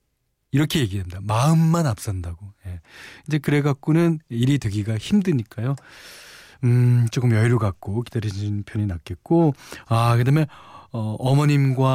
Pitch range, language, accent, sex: 105-145 Hz, Korean, native, male